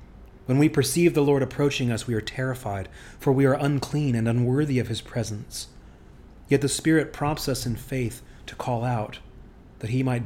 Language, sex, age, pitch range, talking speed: English, male, 30-49, 115-135 Hz, 185 wpm